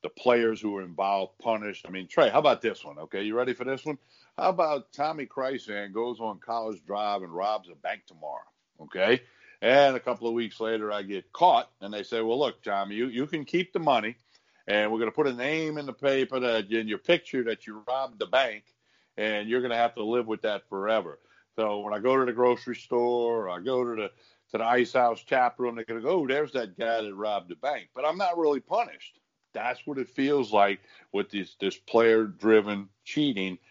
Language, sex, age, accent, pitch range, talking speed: English, male, 60-79, American, 100-125 Hz, 225 wpm